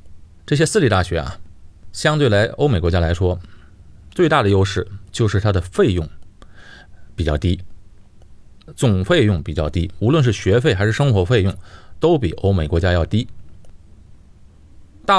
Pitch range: 90-115 Hz